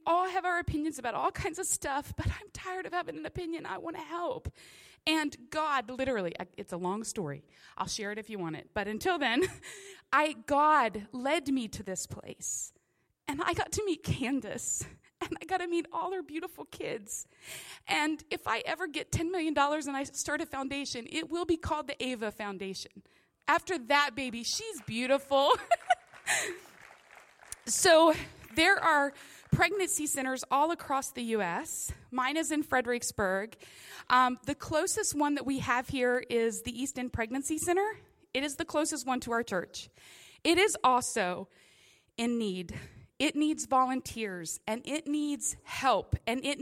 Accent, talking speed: American, 170 wpm